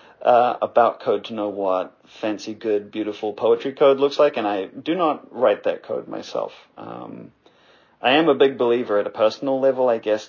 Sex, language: male, English